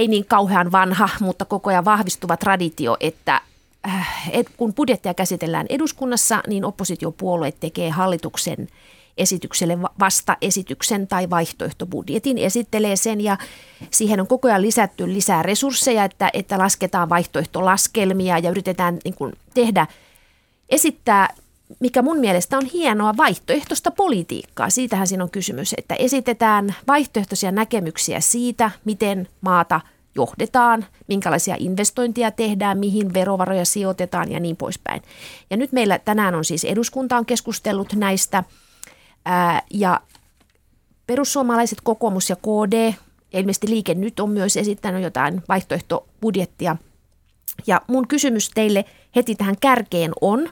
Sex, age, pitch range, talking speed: female, 30-49, 185-230 Hz, 120 wpm